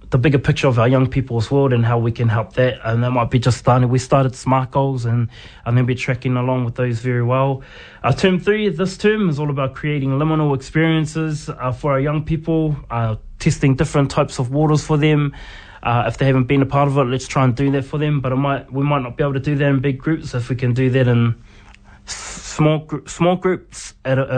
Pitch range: 125-145 Hz